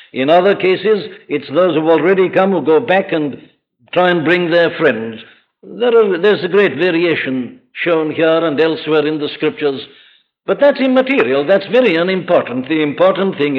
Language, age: English, 60-79